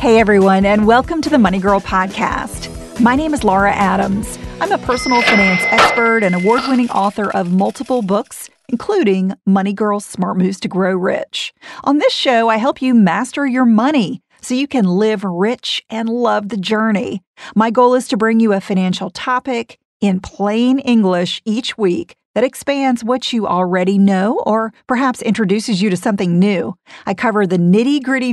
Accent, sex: American, female